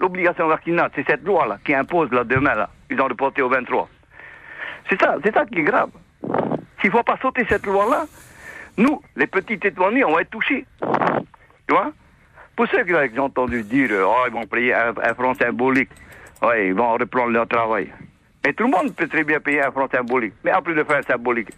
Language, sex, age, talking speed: French, male, 60-79, 215 wpm